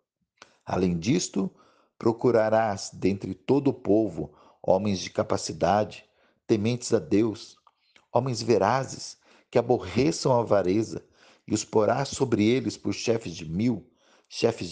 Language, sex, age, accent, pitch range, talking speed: Portuguese, male, 50-69, Brazilian, 105-135 Hz, 120 wpm